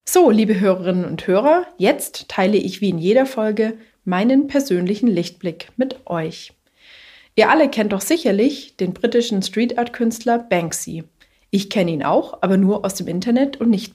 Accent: German